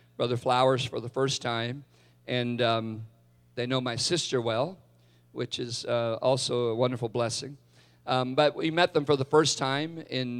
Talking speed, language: 175 wpm, English